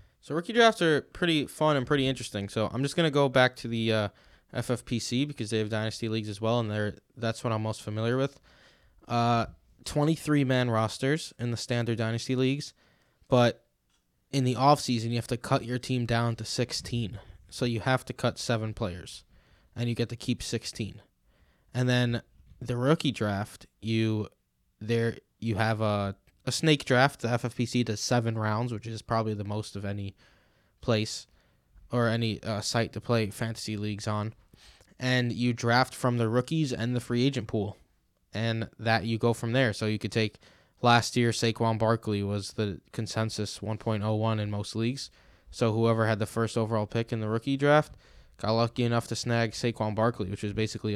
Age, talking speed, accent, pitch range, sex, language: 20-39, 185 wpm, American, 110-125 Hz, male, English